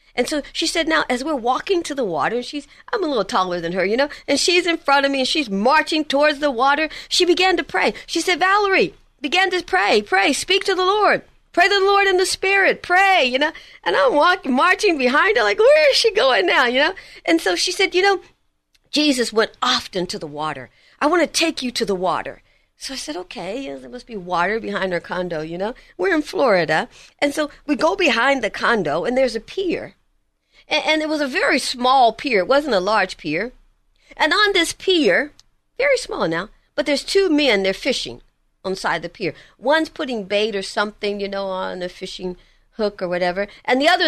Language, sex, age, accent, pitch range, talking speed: English, female, 50-69, American, 220-330 Hz, 225 wpm